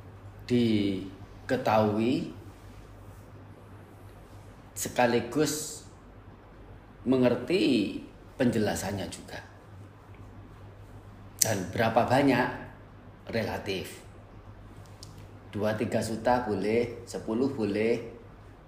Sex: male